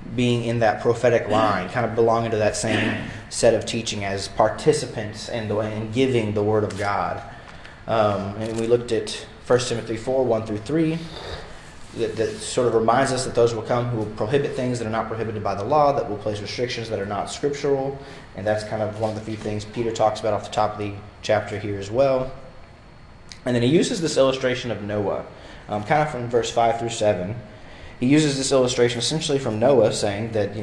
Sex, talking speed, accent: male, 215 wpm, American